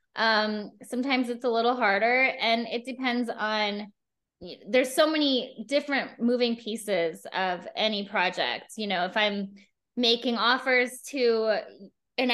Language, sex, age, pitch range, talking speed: English, female, 20-39, 210-255 Hz, 130 wpm